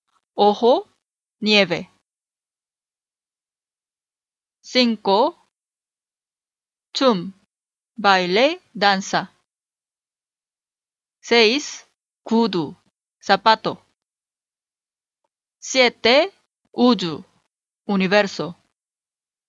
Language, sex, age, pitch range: Korean, female, 30-49, 195-240 Hz